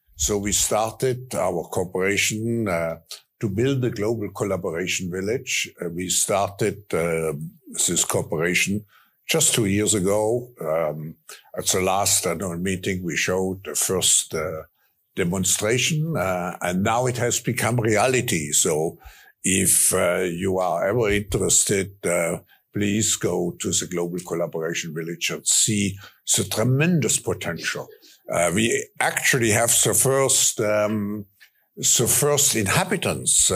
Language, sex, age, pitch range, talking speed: English, male, 60-79, 90-120 Hz, 125 wpm